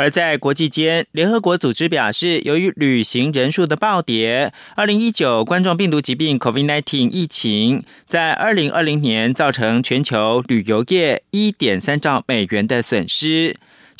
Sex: male